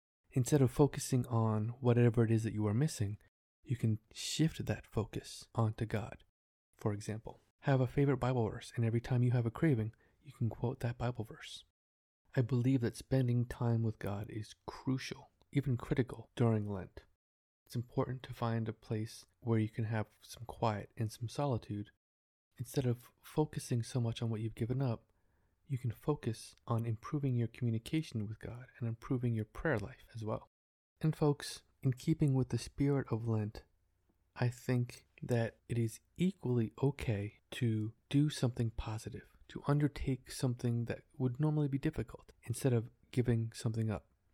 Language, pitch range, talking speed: English, 110-130 Hz, 170 wpm